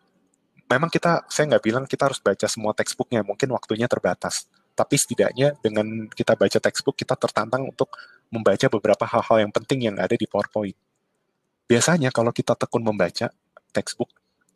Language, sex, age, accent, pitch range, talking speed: Indonesian, male, 20-39, native, 100-130 Hz, 150 wpm